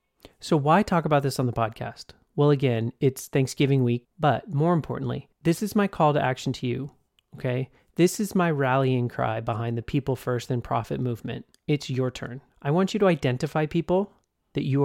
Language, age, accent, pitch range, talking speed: English, 30-49, American, 130-155 Hz, 195 wpm